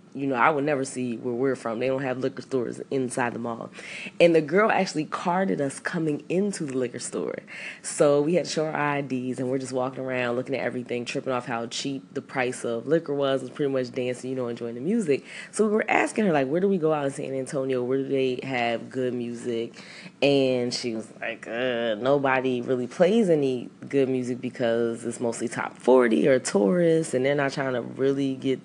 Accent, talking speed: American, 225 wpm